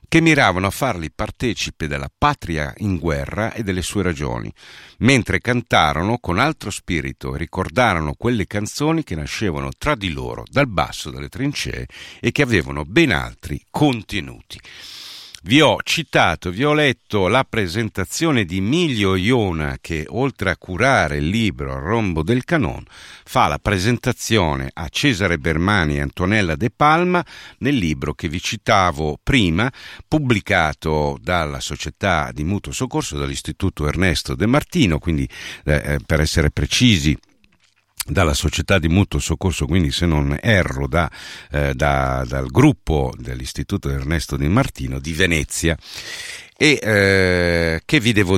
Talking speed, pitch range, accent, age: 140 wpm, 75-115 Hz, native, 50-69